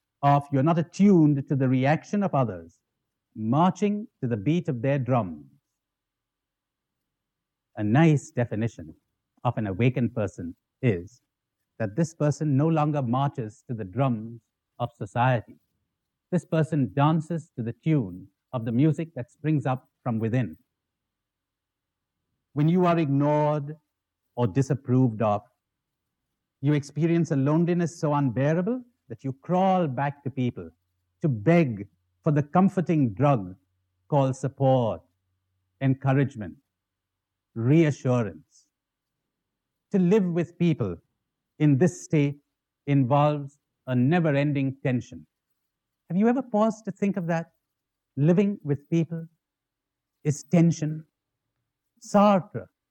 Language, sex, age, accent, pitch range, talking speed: English, male, 60-79, Indian, 115-165 Hz, 115 wpm